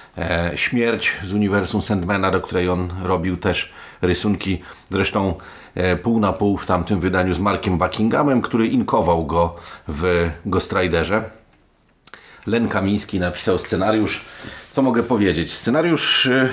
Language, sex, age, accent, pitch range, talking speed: Polish, male, 40-59, native, 90-105 Hz, 130 wpm